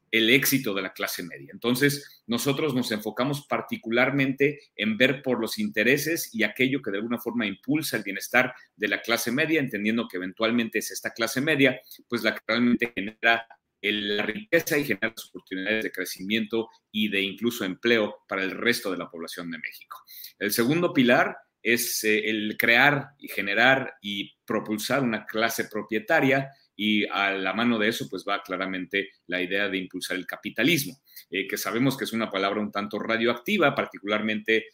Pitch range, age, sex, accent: 105-130 Hz, 40-59, male, Mexican